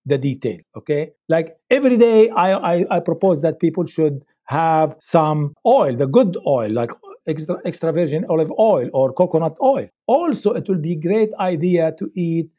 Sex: male